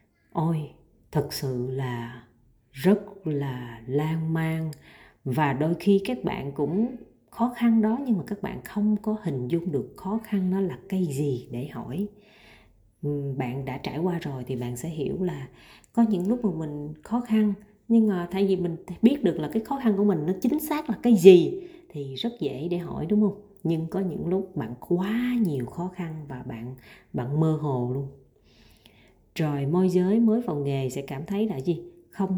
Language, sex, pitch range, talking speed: Vietnamese, female, 145-205 Hz, 195 wpm